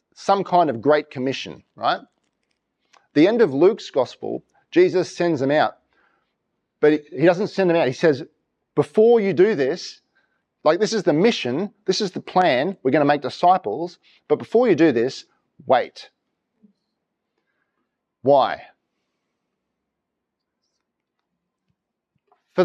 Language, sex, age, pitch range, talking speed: English, male, 40-59, 145-210 Hz, 130 wpm